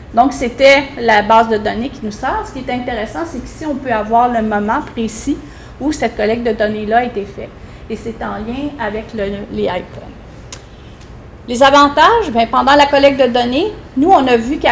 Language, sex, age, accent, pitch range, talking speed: French, female, 40-59, Canadian, 230-280 Hz, 205 wpm